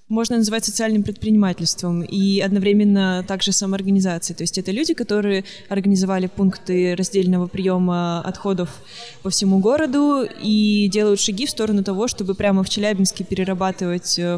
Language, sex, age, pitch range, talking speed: Russian, female, 20-39, 190-215 Hz, 140 wpm